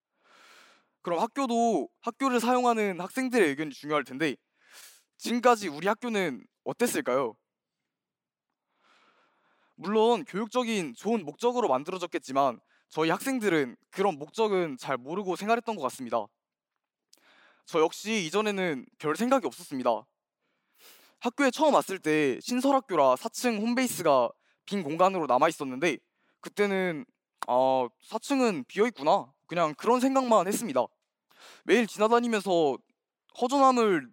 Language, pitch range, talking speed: English, 170-250 Hz, 95 wpm